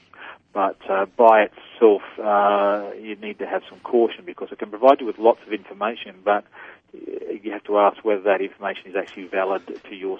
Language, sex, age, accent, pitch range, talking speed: English, male, 40-59, Australian, 100-120 Hz, 195 wpm